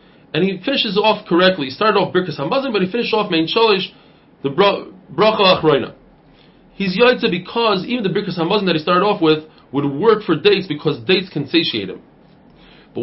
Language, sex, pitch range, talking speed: English, male, 155-210 Hz, 195 wpm